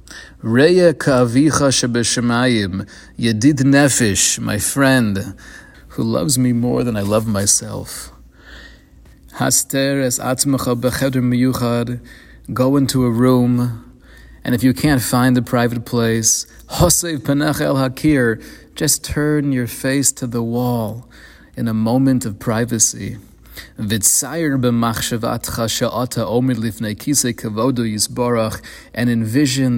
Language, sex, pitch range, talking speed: English, male, 110-130 Hz, 100 wpm